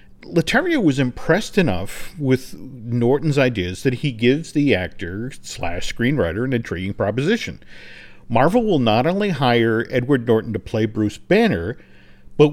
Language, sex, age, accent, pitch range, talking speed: English, male, 50-69, American, 110-160 Hz, 140 wpm